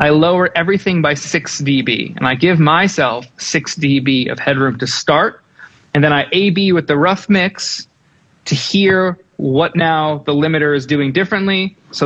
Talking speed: 170 wpm